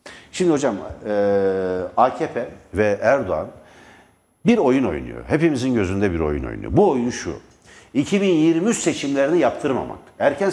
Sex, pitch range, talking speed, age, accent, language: male, 115-160 Hz, 120 wpm, 60-79, native, Turkish